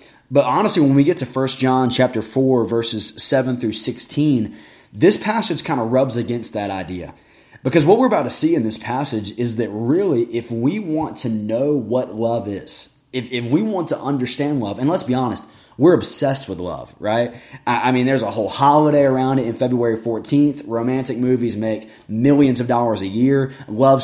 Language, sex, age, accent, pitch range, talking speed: English, male, 20-39, American, 115-145 Hz, 190 wpm